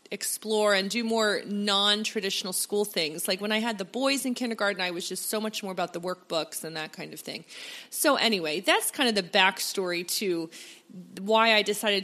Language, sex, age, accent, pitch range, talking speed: English, female, 30-49, American, 190-240 Hz, 200 wpm